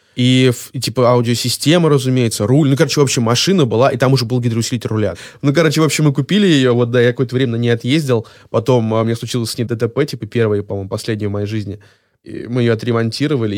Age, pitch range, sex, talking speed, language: 20-39, 105-125 Hz, male, 215 wpm, Russian